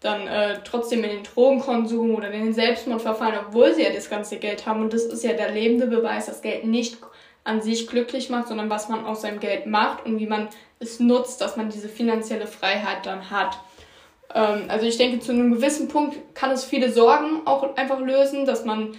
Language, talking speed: German, 215 wpm